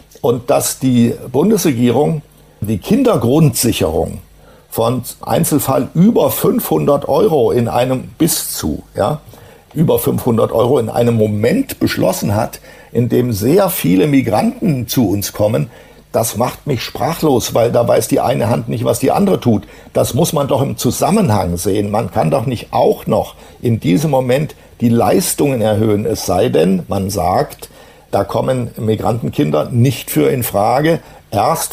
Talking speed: 150 wpm